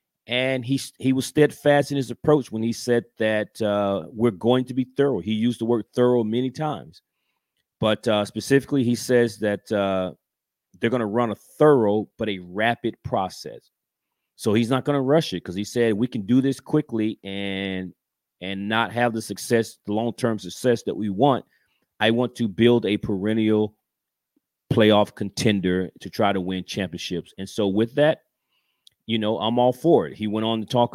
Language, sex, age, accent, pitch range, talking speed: English, male, 30-49, American, 100-120 Hz, 190 wpm